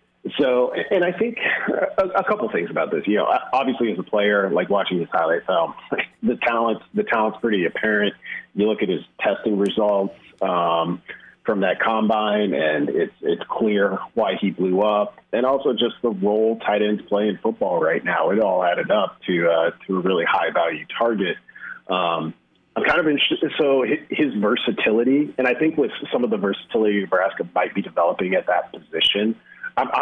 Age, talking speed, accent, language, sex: 40-59, 190 wpm, American, English, male